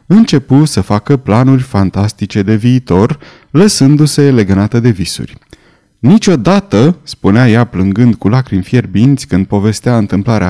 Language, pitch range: Romanian, 105-150 Hz